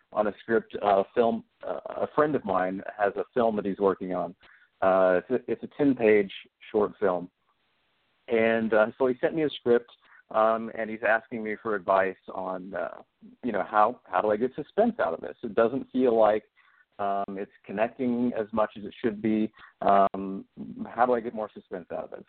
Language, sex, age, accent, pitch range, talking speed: English, male, 40-59, American, 105-125 Hz, 205 wpm